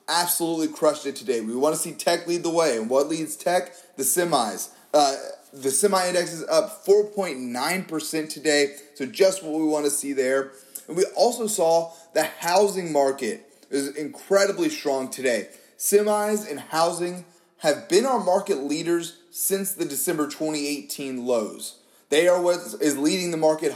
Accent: American